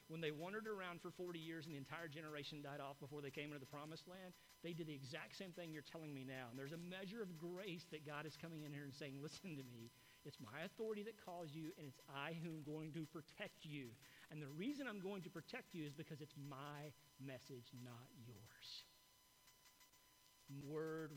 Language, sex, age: English, male, 50-69